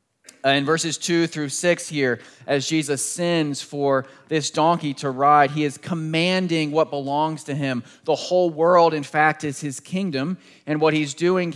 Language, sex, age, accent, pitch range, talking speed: English, male, 30-49, American, 135-160 Hz, 170 wpm